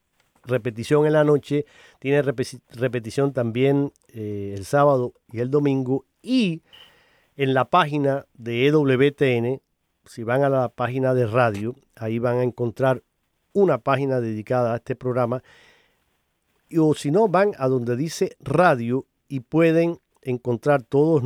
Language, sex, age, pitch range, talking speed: Spanish, male, 50-69, 120-145 Hz, 135 wpm